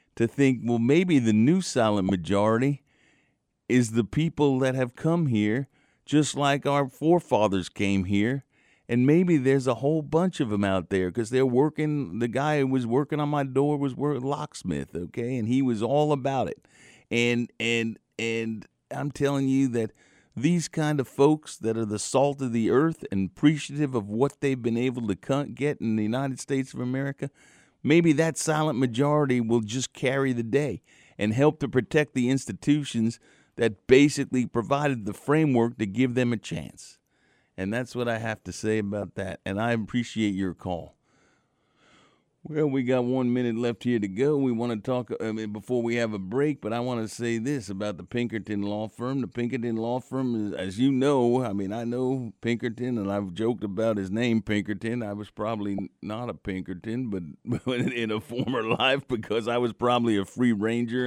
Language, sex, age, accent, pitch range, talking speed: English, male, 50-69, American, 110-140 Hz, 190 wpm